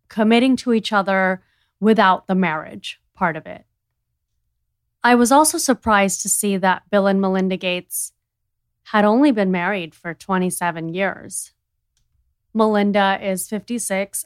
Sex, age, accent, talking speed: female, 30-49, American, 130 wpm